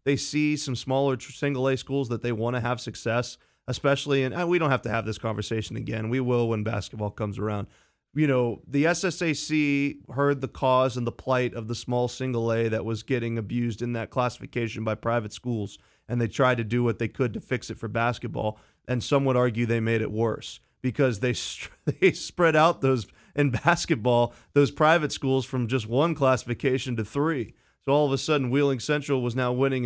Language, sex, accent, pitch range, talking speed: English, male, American, 115-135 Hz, 200 wpm